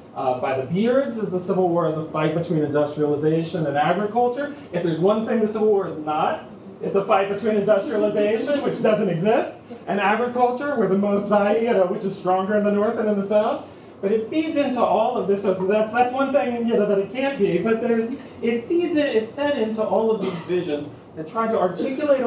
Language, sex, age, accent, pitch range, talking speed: English, male, 30-49, American, 175-230 Hz, 225 wpm